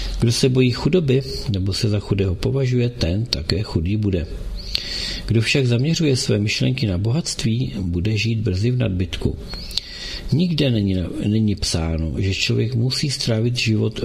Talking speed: 145 wpm